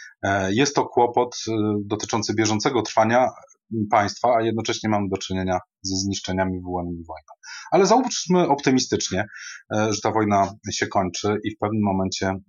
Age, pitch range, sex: 30-49, 95-110 Hz, male